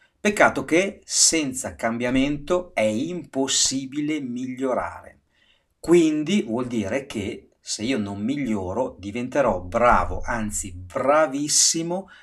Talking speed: 95 wpm